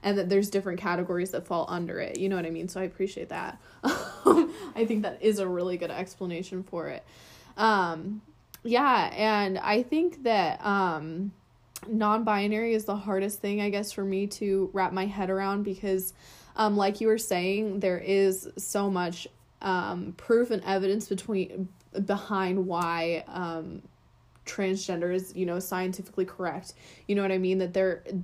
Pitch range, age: 185-205 Hz, 20-39